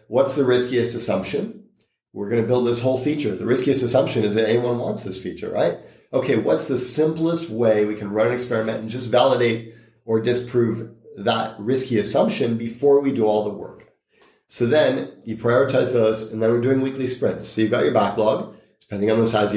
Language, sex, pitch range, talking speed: English, male, 110-125 Hz, 200 wpm